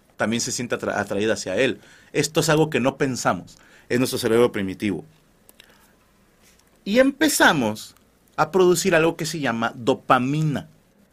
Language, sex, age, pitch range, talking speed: Spanish, male, 40-59, 120-190 Hz, 135 wpm